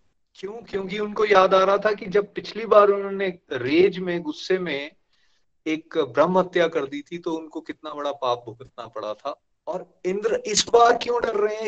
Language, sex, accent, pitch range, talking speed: Hindi, male, native, 140-200 Hz, 195 wpm